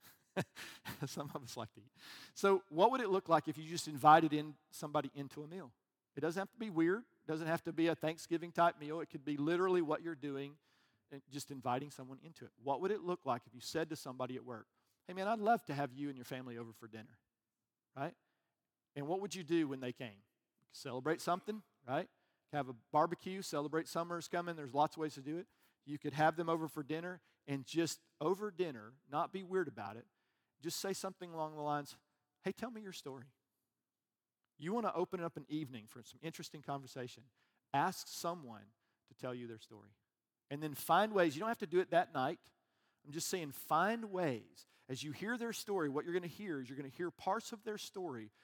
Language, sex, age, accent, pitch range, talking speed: English, male, 50-69, American, 135-175 Hz, 220 wpm